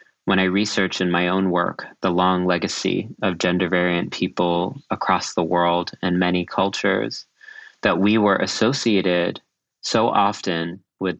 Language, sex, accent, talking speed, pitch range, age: English, male, American, 145 wpm, 90-100 Hz, 30-49